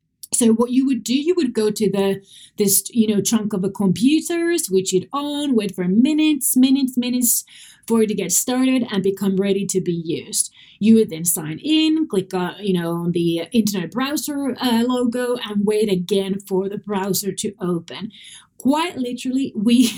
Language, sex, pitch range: English, female, 195-260 Hz